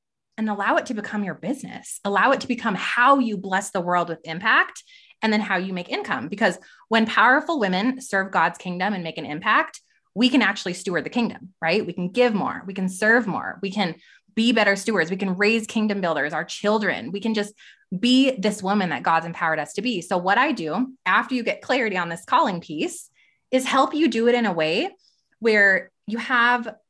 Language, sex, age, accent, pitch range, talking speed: English, female, 20-39, American, 185-250 Hz, 215 wpm